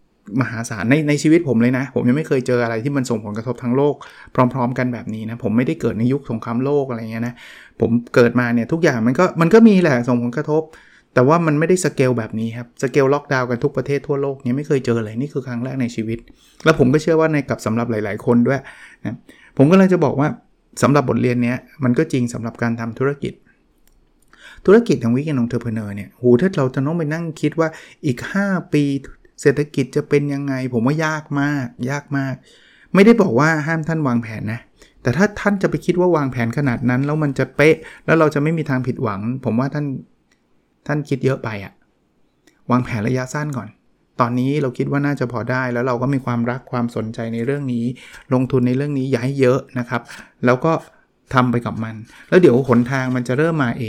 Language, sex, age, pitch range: Thai, male, 20-39, 120-145 Hz